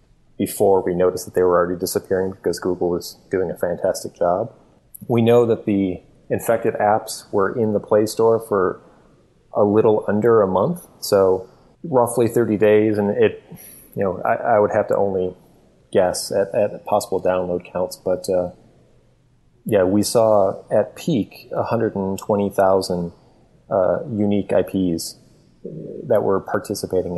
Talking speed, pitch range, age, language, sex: 155 wpm, 95-105 Hz, 30-49, English, male